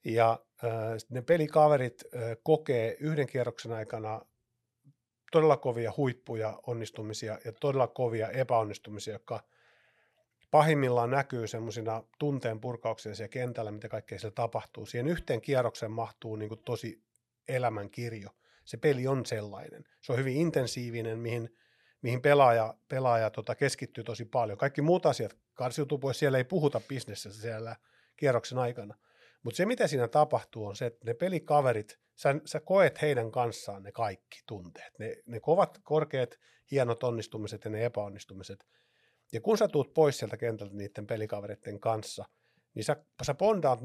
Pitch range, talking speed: 110-140 Hz, 145 wpm